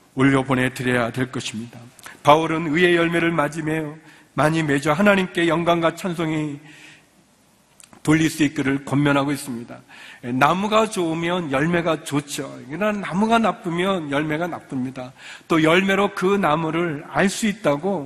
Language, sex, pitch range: Korean, male, 155-220 Hz